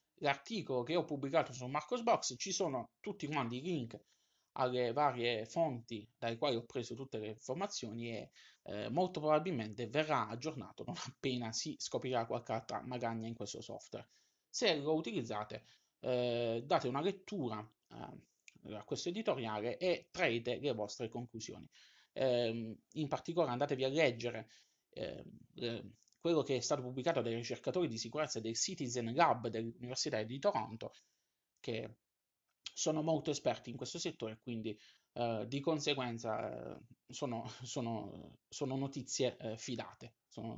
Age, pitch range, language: 20-39, 115-155 Hz, Italian